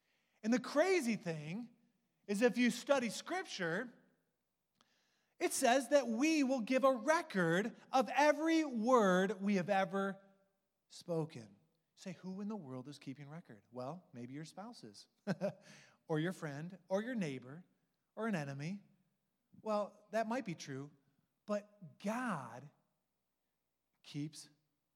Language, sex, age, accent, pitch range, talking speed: English, male, 30-49, American, 140-210 Hz, 125 wpm